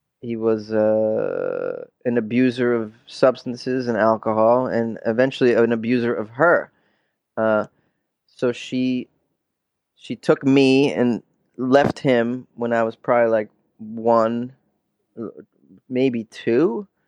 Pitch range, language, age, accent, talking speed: 115-130 Hz, English, 20-39, American, 110 wpm